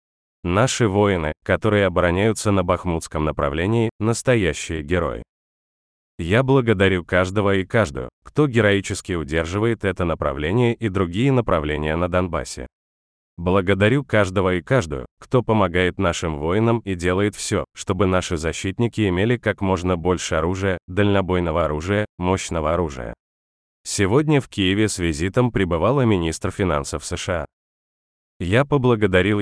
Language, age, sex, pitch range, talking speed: Russian, 30-49, male, 85-105 Hz, 120 wpm